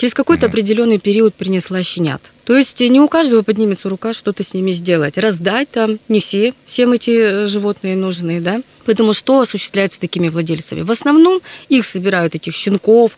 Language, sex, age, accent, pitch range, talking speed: Russian, female, 30-49, native, 175-225 Hz, 170 wpm